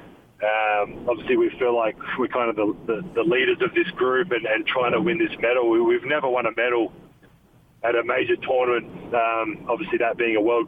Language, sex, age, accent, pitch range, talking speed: English, male, 40-59, Australian, 120-180 Hz, 215 wpm